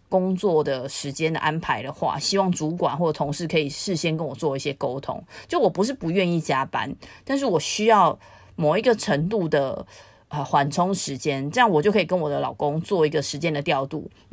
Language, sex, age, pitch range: Chinese, female, 30-49, 150-190 Hz